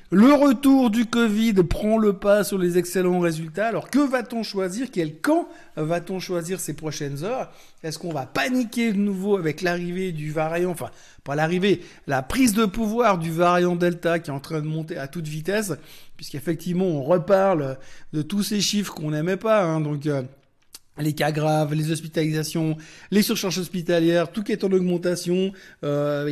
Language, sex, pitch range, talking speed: French, male, 155-195 Hz, 175 wpm